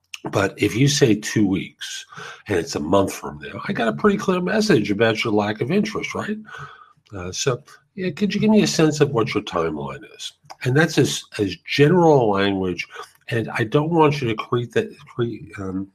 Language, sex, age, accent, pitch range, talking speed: English, male, 50-69, American, 105-155 Hz, 190 wpm